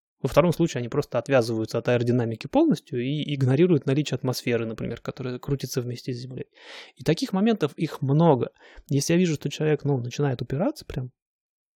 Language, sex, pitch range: Russian, male, 130-180 Hz